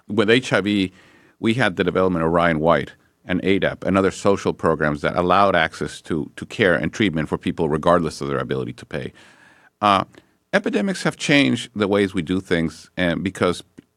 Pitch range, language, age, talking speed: 90-120 Hz, English, 50-69, 180 wpm